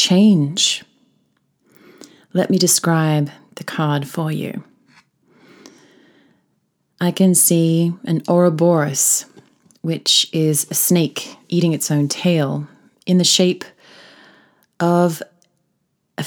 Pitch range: 155-200 Hz